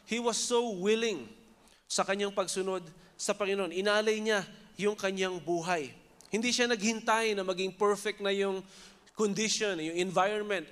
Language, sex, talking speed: Filipino, male, 140 wpm